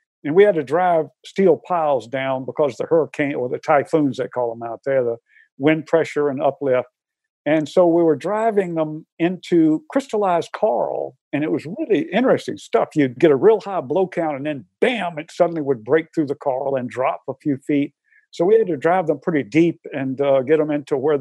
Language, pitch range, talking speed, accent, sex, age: English, 135-180 Hz, 210 wpm, American, male, 50-69